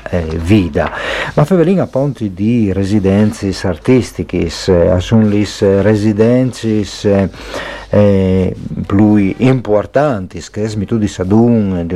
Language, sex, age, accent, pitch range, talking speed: Italian, male, 50-69, native, 90-110 Hz, 105 wpm